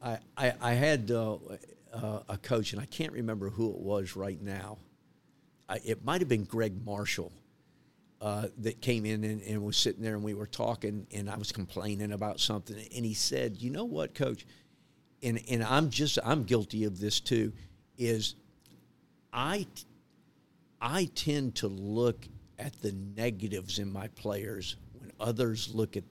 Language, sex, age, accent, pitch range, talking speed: English, male, 50-69, American, 105-115 Hz, 170 wpm